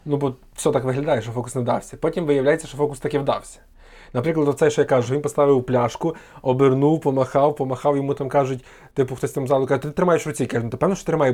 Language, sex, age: Ukrainian, male, 20-39